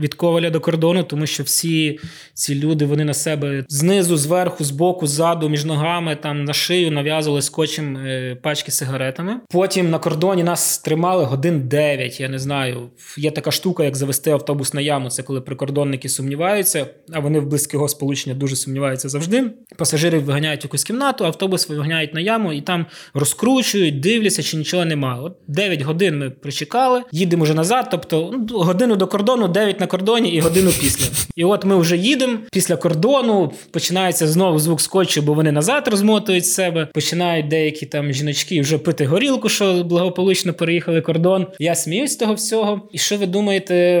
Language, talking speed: Ukrainian, 170 wpm